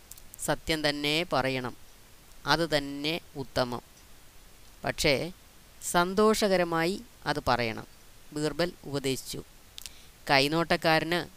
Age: 20-39